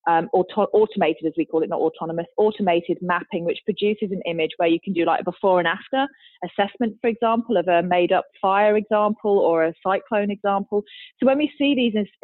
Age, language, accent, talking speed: 30-49, English, British, 195 wpm